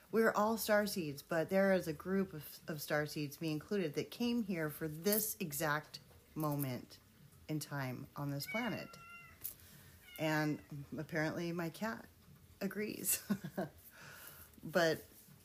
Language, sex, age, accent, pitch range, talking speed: English, female, 30-49, American, 155-205 Hz, 120 wpm